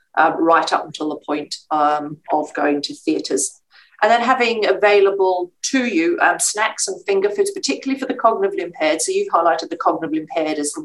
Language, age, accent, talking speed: English, 40-59, British, 195 wpm